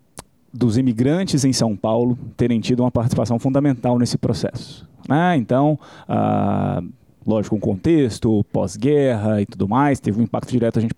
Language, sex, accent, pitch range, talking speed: Portuguese, male, Brazilian, 115-155 Hz, 160 wpm